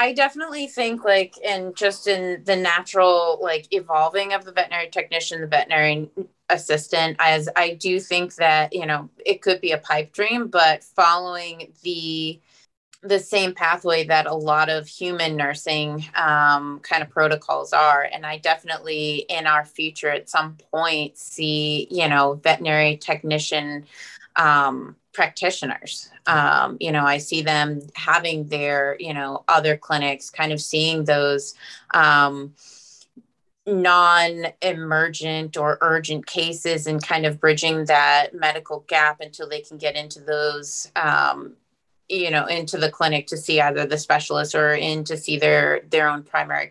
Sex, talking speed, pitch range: female, 150 wpm, 150-170 Hz